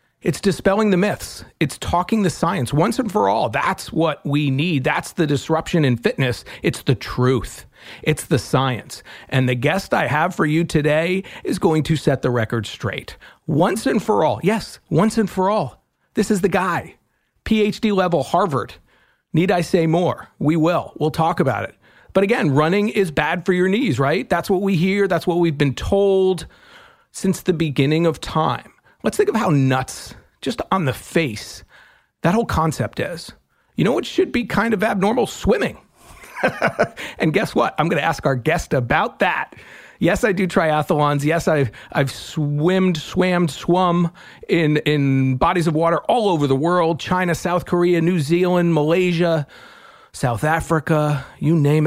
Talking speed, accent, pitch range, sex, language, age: 175 wpm, American, 145-185 Hz, male, English, 40-59